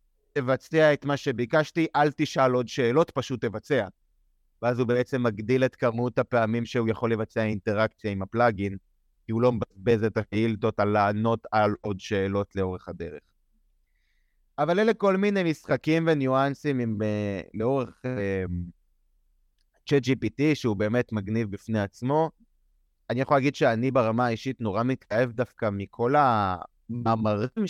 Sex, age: male, 30-49